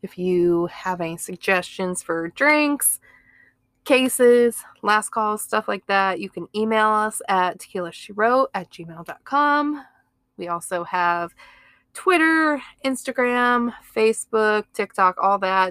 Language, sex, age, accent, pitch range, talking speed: English, female, 20-39, American, 175-240 Hz, 120 wpm